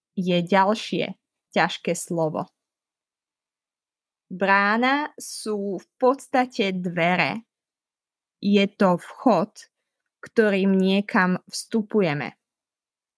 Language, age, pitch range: Slovak, 20-39, 180-225 Hz